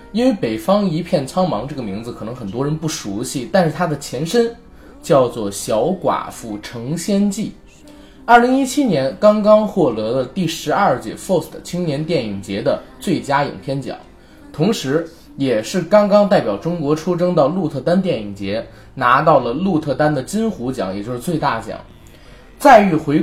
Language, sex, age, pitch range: Chinese, male, 20-39, 125-180 Hz